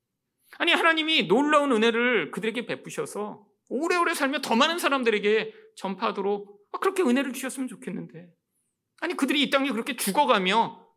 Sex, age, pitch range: male, 40-59, 205-280 Hz